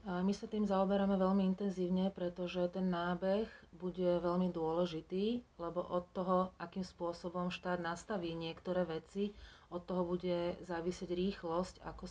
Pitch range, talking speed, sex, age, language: 175-185 Hz, 135 wpm, female, 30-49, Slovak